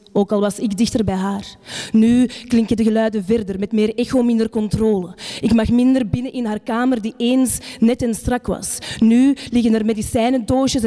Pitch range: 205-235 Hz